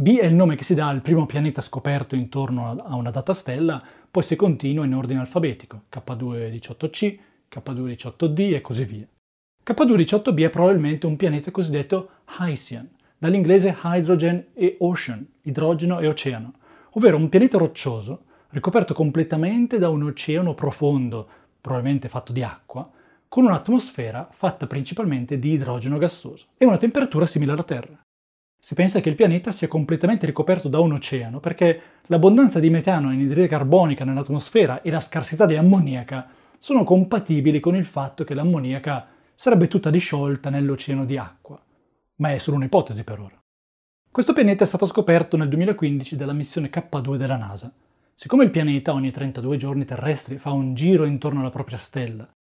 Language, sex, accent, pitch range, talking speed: Italian, male, native, 135-180 Hz, 165 wpm